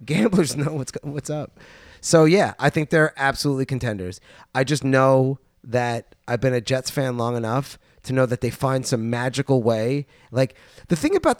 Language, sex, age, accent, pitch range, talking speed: English, male, 20-39, American, 125-160 Hz, 185 wpm